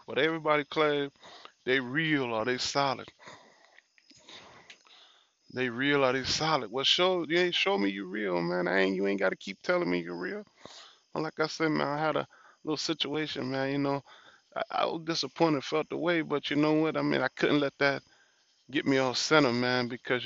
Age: 20-39